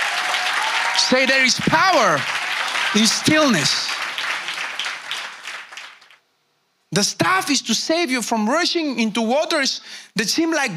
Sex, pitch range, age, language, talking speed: male, 145-230 Hz, 50-69, English, 105 wpm